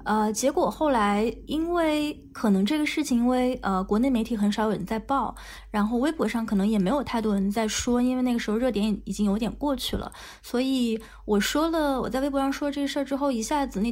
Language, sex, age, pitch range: Chinese, female, 20-39, 205-240 Hz